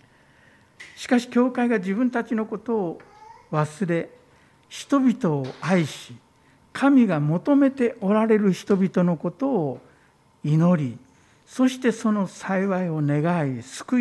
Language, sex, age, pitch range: Japanese, male, 60-79, 130-200 Hz